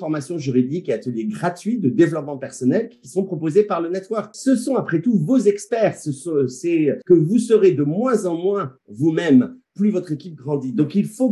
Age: 50-69